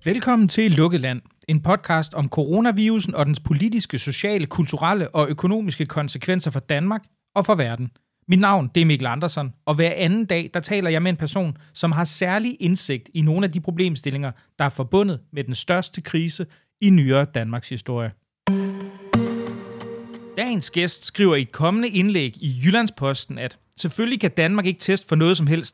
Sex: male